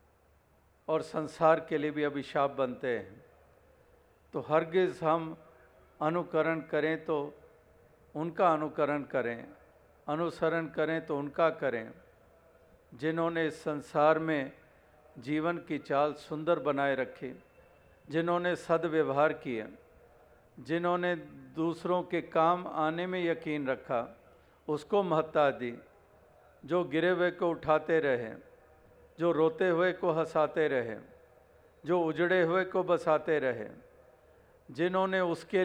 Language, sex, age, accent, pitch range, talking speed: Hindi, male, 50-69, native, 145-170 Hz, 110 wpm